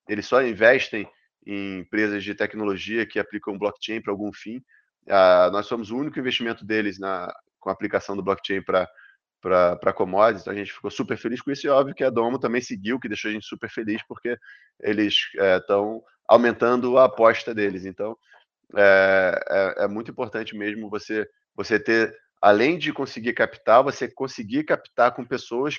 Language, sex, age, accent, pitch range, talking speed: Portuguese, male, 20-39, Brazilian, 100-120 Hz, 180 wpm